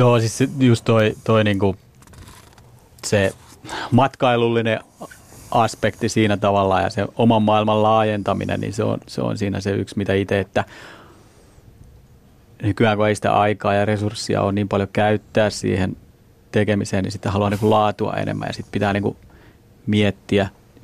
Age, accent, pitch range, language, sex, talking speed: 30-49, native, 100-115 Hz, Finnish, male, 145 wpm